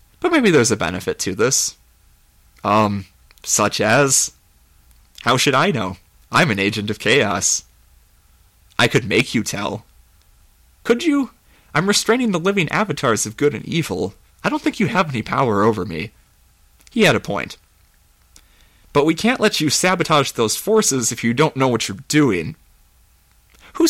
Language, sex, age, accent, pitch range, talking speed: English, male, 30-49, American, 90-145 Hz, 160 wpm